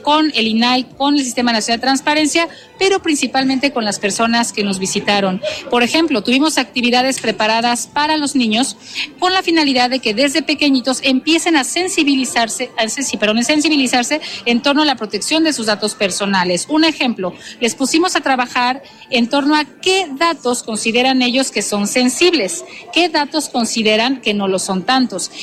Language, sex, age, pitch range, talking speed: Spanish, female, 40-59, 225-290 Hz, 170 wpm